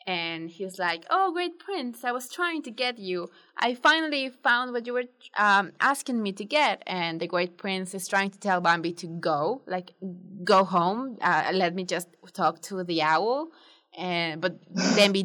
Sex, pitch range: female, 170-230 Hz